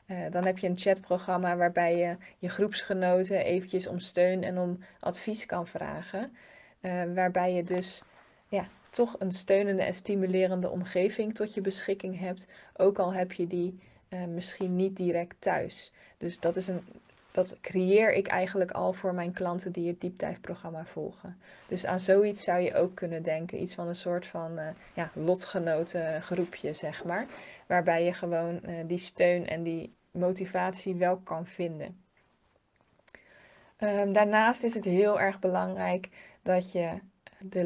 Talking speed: 160 wpm